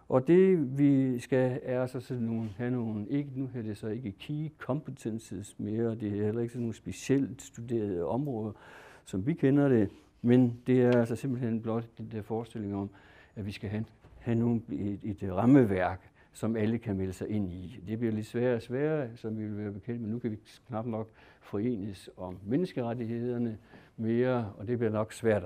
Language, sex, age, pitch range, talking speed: English, male, 60-79, 105-140 Hz, 195 wpm